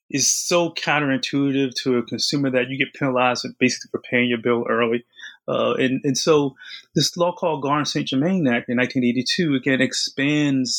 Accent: American